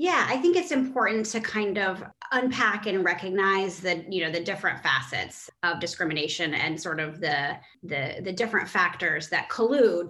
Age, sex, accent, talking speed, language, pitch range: 20-39, female, American, 170 wpm, English, 175-215 Hz